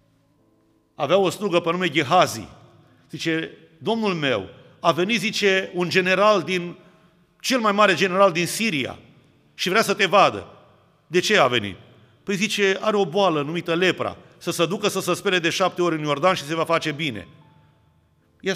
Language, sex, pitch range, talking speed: Romanian, male, 155-200 Hz, 175 wpm